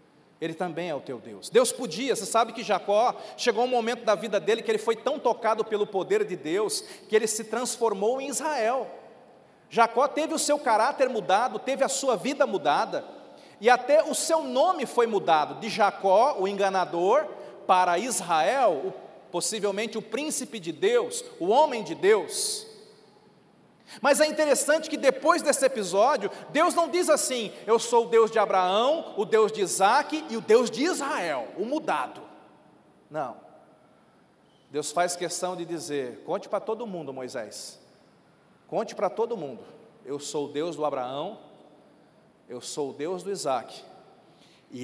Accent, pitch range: Brazilian, 190-285 Hz